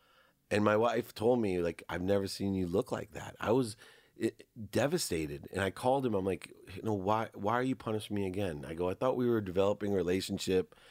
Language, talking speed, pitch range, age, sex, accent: English, 220 wpm, 90-115 Hz, 30-49, male, American